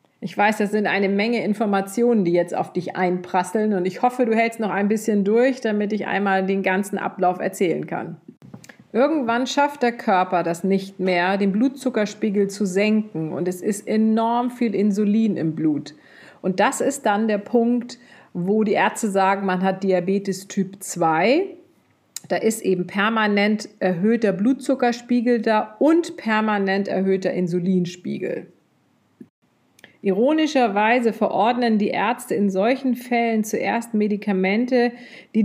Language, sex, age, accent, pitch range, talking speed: German, female, 40-59, German, 190-230 Hz, 140 wpm